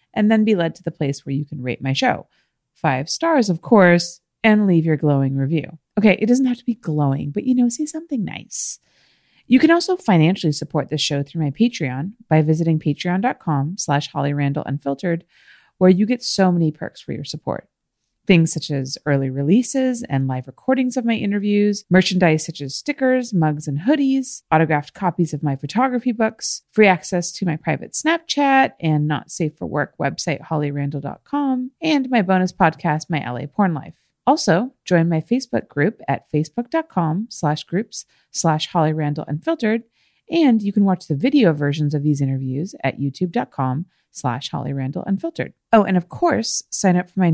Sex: female